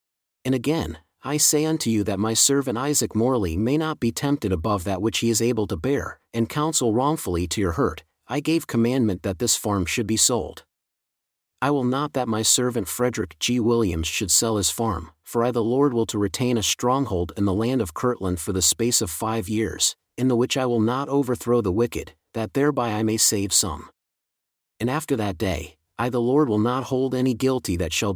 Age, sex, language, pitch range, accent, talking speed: 40-59, male, English, 100-130 Hz, American, 215 wpm